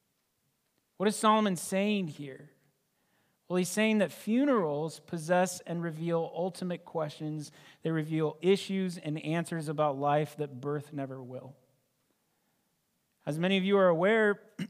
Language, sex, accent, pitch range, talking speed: English, male, American, 145-180 Hz, 130 wpm